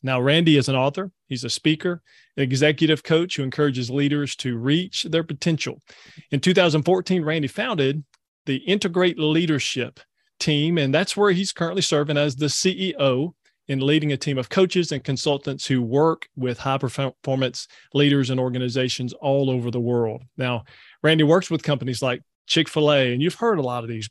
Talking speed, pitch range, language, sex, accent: 170 wpm, 130-160 Hz, English, male, American